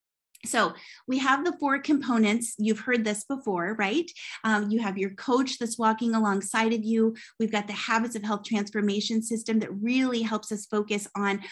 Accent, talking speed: American, 180 wpm